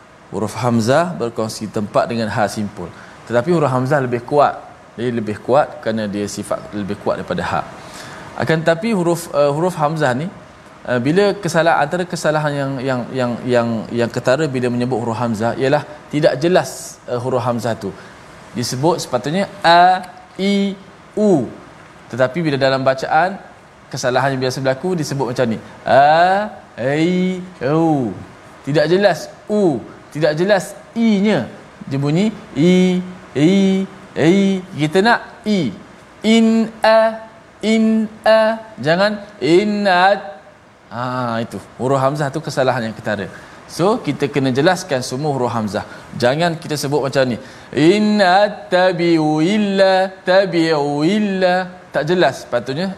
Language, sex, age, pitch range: Malayalam, male, 20-39, 125-185 Hz